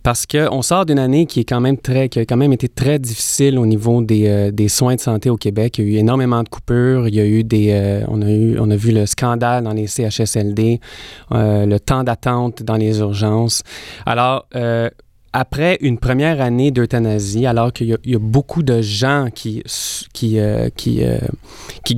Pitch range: 110-130 Hz